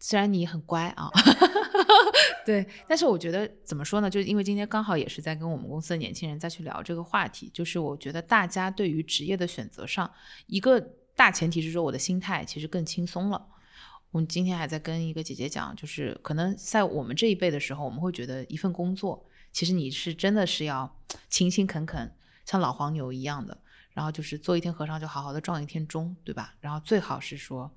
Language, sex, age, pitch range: English, female, 20-39, 155-195 Hz